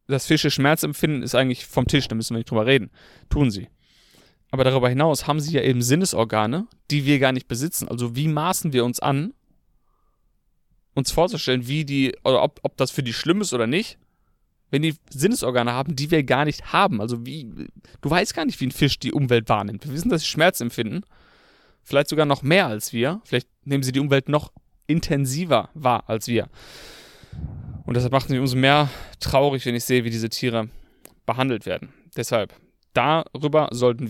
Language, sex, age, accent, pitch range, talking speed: German, male, 30-49, German, 120-150 Hz, 190 wpm